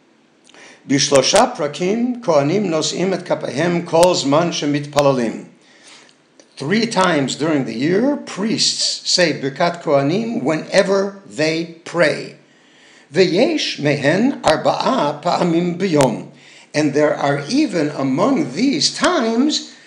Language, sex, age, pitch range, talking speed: English, male, 60-79, 140-195 Hz, 95 wpm